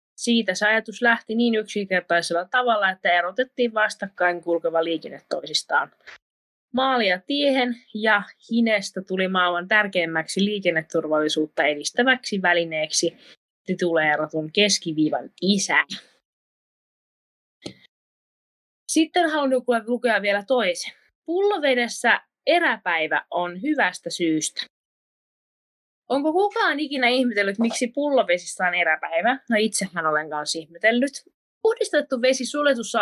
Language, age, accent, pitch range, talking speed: Finnish, 20-39, native, 175-250 Hz, 100 wpm